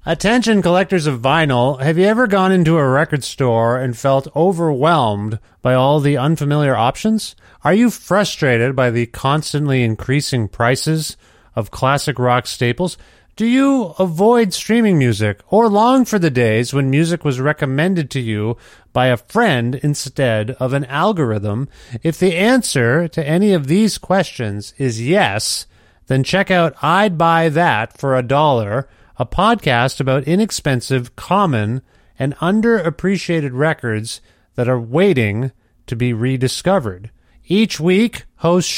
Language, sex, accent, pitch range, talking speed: English, male, American, 125-175 Hz, 140 wpm